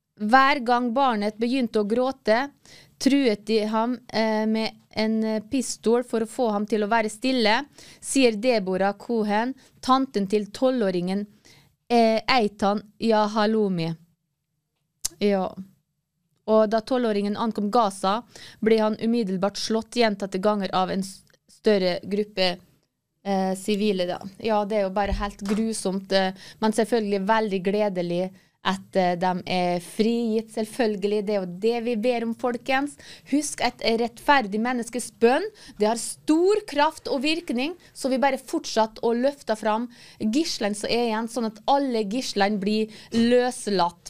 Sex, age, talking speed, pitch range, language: female, 20-39, 145 wpm, 195-240 Hz, English